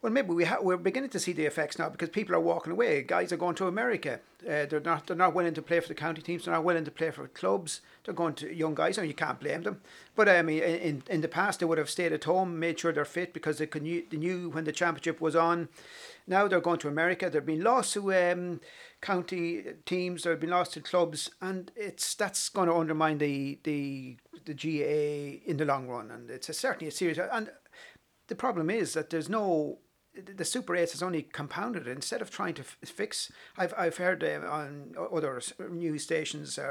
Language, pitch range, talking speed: English, 155-185 Hz, 235 wpm